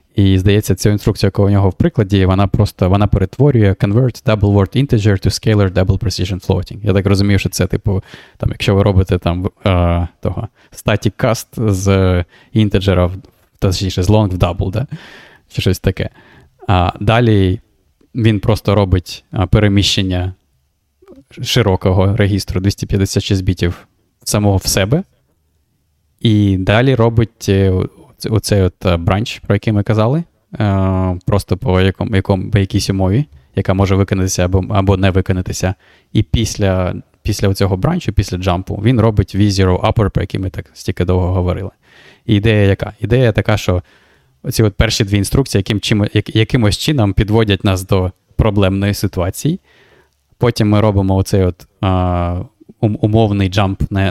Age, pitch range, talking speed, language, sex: 20-39, 95-110 Hz, 155 wpm, Ukrainian, male